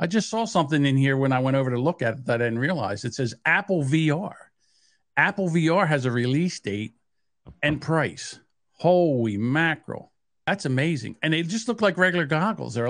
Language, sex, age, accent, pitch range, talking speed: English, male, 50-69, American, 115-165 Hz, 195 wpm